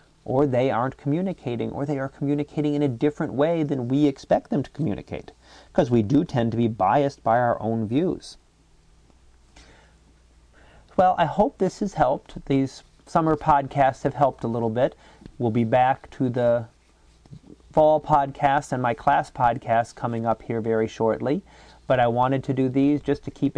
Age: 30-49